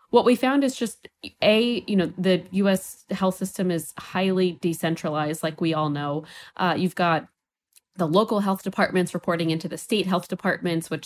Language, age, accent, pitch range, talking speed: English, 20-39, American, 160-190 Hz, 180 wpm